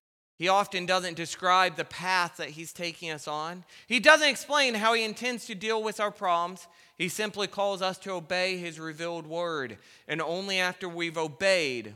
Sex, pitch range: male, 150-200 Hz